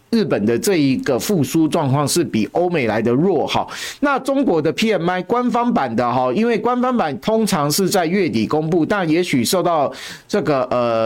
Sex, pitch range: male, 140-205 Hz